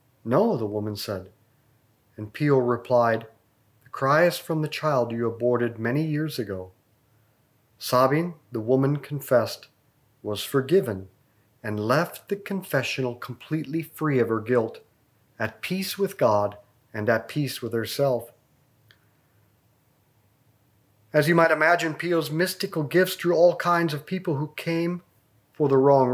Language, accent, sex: English, American, male